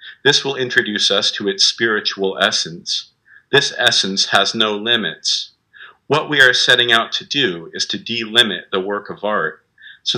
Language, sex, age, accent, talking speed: English, male, 50-69, American, 165 wpm